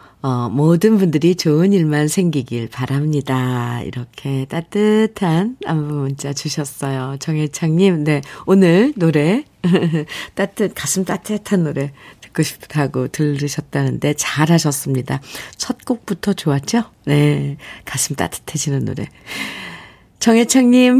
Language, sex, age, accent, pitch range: Korean, female, 50-69, native, 145-200 Hz